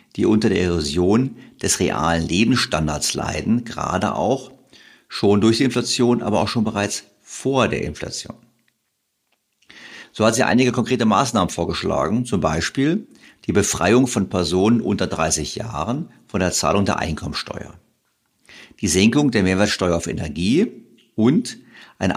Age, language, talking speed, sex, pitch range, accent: 50-69, German, 135 wpm, male, 90-130 Hz, German